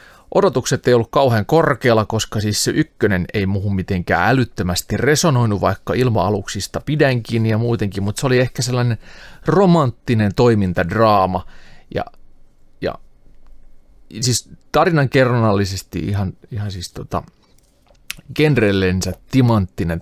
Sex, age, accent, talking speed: male, 30-49, native, 110 wpm